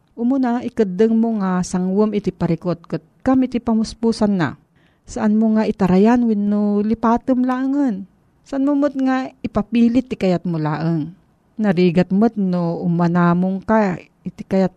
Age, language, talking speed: 40-59, Filipino, 130 wpm